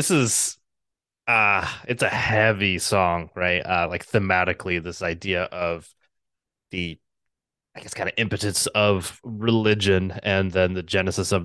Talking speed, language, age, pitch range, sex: 145 wpm, English, 20-39, 90-105 Hz, male